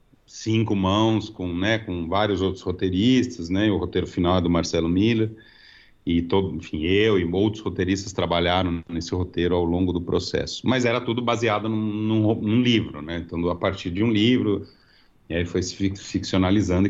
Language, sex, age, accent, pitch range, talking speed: Portuguese, male, 40-59, Brazilian, 95-115 Hz, 180 wpm